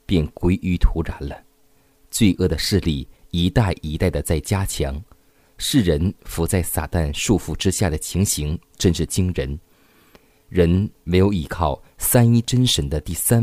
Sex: male